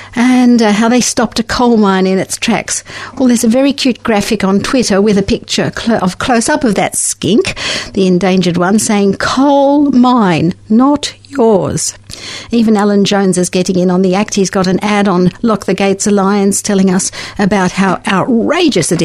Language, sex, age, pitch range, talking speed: English, female, 60-79, 185-225 Hz, 185 wpm